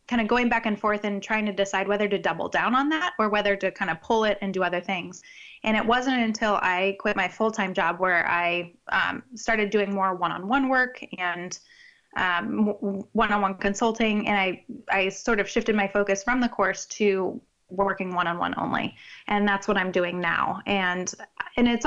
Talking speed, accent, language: 200 wpm, American, English